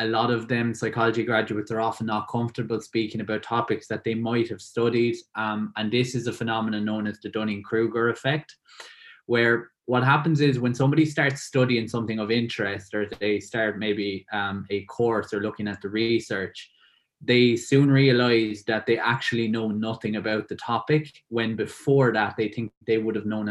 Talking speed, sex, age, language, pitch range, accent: 185 wpm, male, 20-39, English, 110-120 Hz, Irish